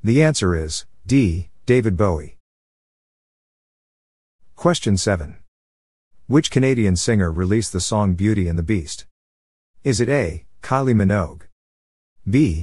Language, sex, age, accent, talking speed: English, male, 50-69, American, 115 wpm